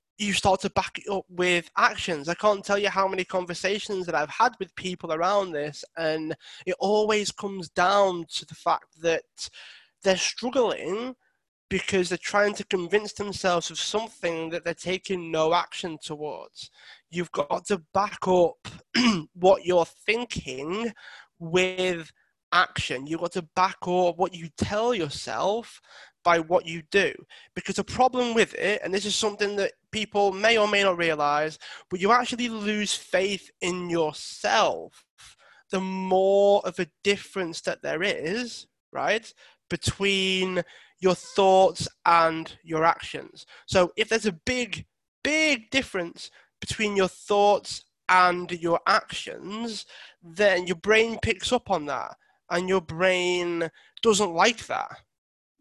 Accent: British